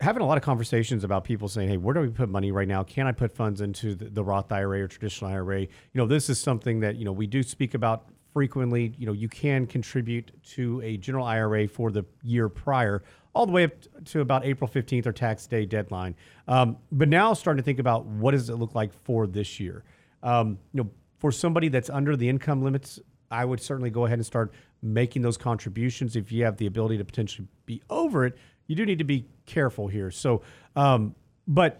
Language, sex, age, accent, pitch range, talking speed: English, male, 40-59, American, 110-135 Hz, 230 wpm